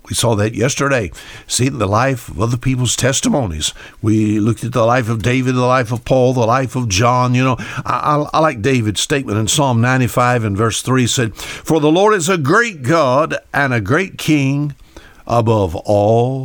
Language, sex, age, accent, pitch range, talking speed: English, male, 60-79, American, 110-145 Hz, 195 wpm